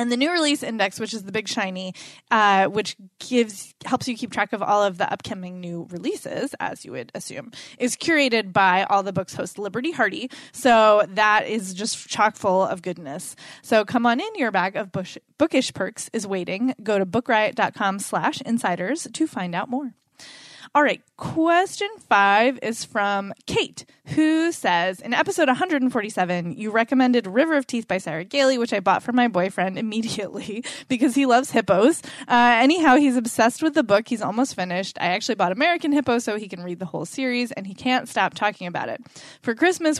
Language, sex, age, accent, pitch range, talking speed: English, female, 20-39, American, 195-260 Hz, 190 wpm